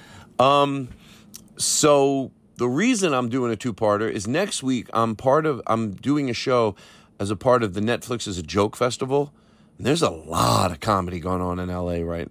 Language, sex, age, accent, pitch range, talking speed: English, male, 40-59, American, 95-130 Hz, 185 wpm